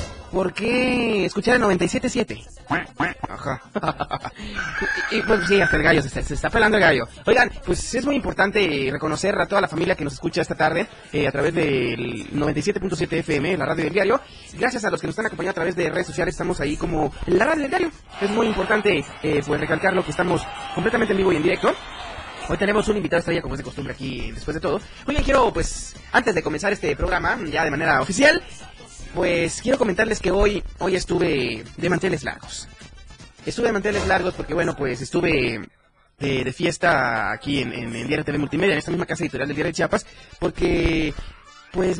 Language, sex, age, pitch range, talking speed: Spanish, male, 30-49, 145-190 Hz, 200 wpm